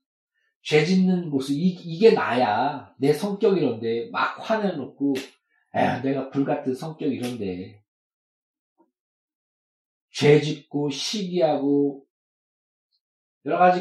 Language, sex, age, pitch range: Korean, male, 40-59, 135-215 Hz